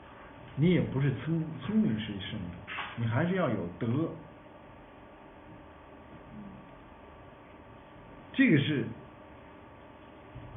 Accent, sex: native, male